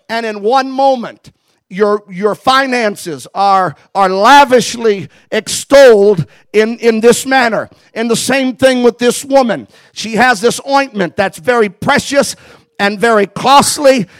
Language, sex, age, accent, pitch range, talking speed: English, male, 50-69, American, 210-265 Hz, 135 wpm